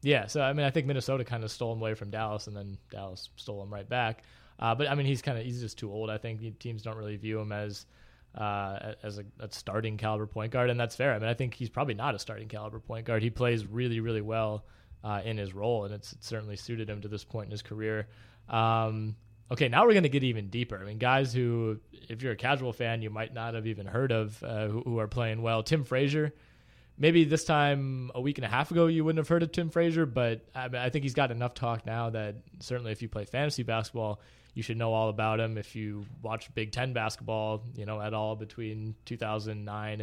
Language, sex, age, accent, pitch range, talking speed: English, male, 20-39, American, 110-130 Hz, 245 wpm